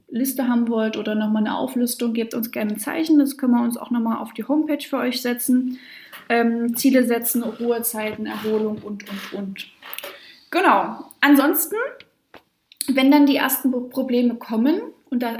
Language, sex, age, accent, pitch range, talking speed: German, female, 20-39, German, 230-270 Hz, 170 wpm